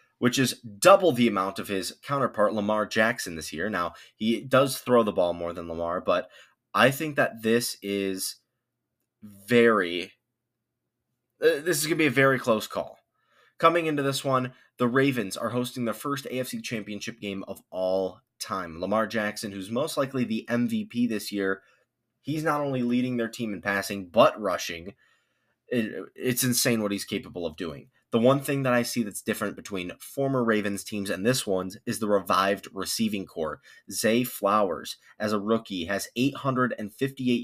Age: 20-39